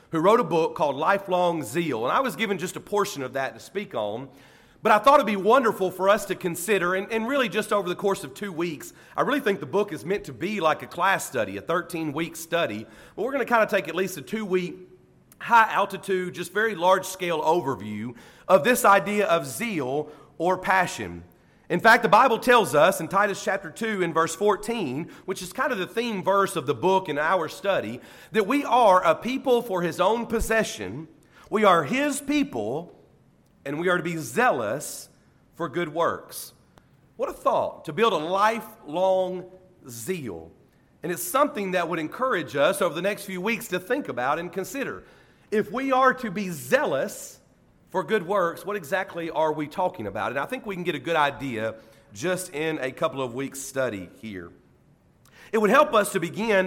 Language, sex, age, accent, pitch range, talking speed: English, male, 40-59, American, 160-215 Hz, 200 wpm